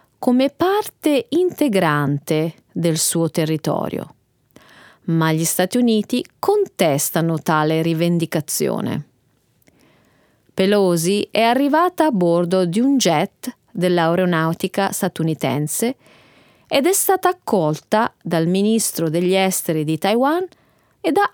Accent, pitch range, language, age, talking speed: native, 165-245 Hz, Italian, 30-49, 100 wpm